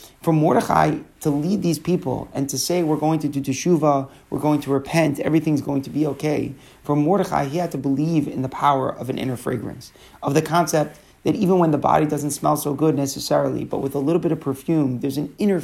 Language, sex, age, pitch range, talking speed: English, male, 30-49, 135-160 Hz, 225 wpm